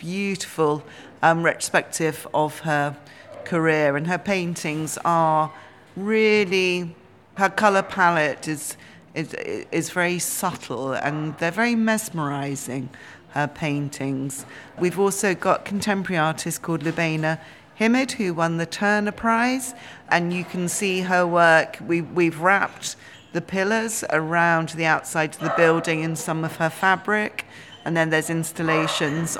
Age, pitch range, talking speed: 40-59, 155-185 Hz, 130 wpm